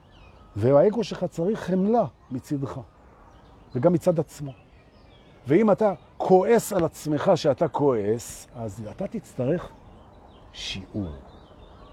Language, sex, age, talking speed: Hebrew, male, 50-69, 95 wpm